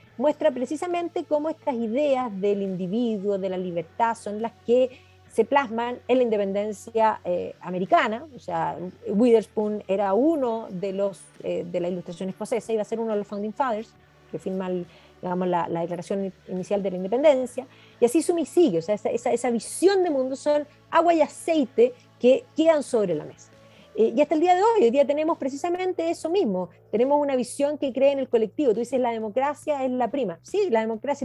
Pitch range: 210-315 Hz